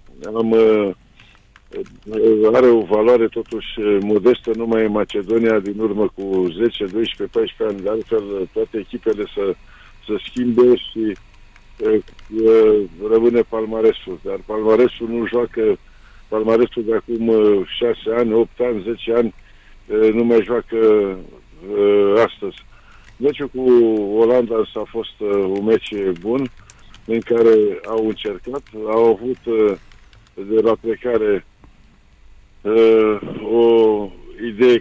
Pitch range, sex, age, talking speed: 105-115 Hz, male, 50-69, 110 wpm